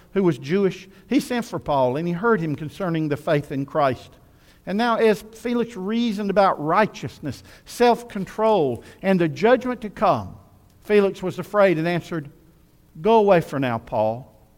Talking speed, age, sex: 160 wpm, 50-69, male